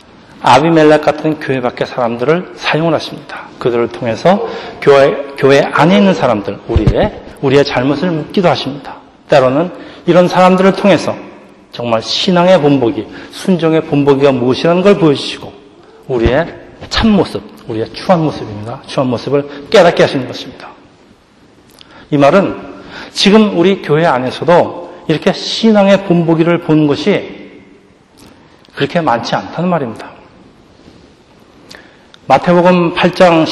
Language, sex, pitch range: Korean, male, 135-175 Hz